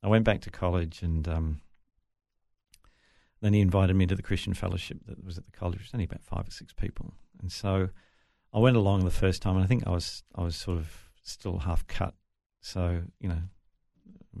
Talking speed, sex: 215 wpm, male